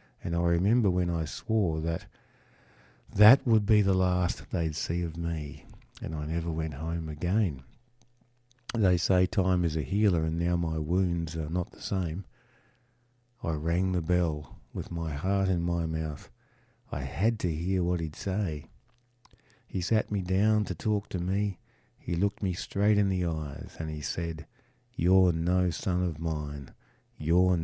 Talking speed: 165 wpm